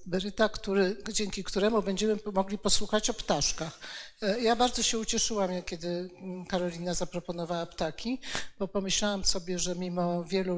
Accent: native